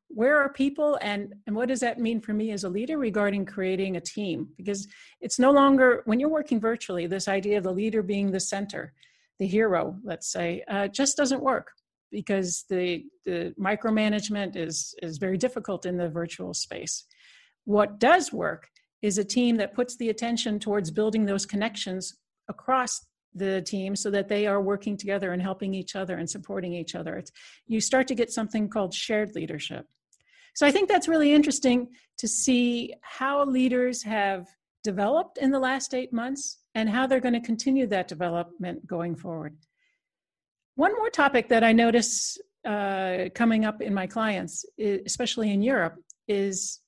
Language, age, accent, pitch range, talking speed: English, 50-69, American, 195-250 Hz, 175 wpm